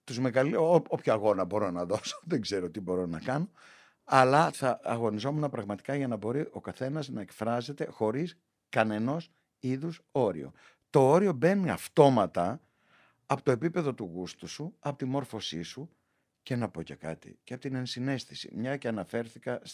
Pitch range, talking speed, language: 110-165 Hz, 165 wpm, Greek